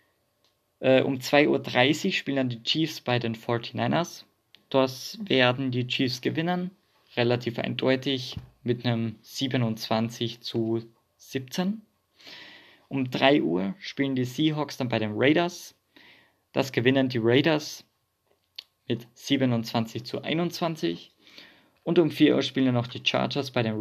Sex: male